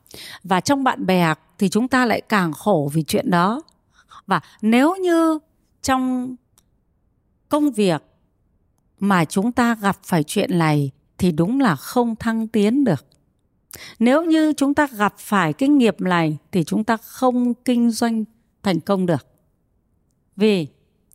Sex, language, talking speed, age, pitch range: female, Vietnamese, 150 wpm, 30-49, 175-255 Hz